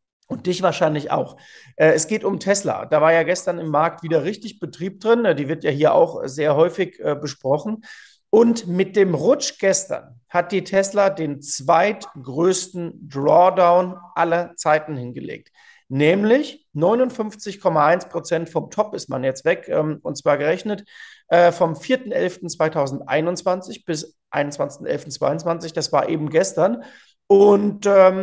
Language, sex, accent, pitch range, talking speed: German, male, German, 150-185 Hz, 130 wpm